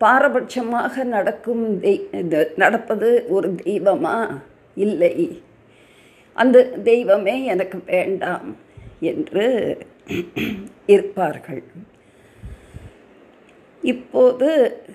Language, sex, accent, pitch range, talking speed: Tamil, female, native, 195-260 Hz, 50 wpm